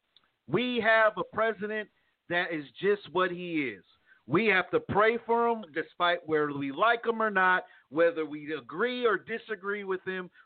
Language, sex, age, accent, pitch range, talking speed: English, male, 50-69, American, 185-235 Hz, 170 wpm